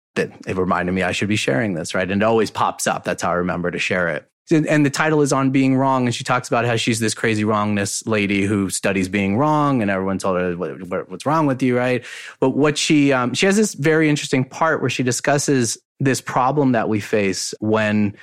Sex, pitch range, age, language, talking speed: male, 105-160 Hz, 30-49, English, 230 wpm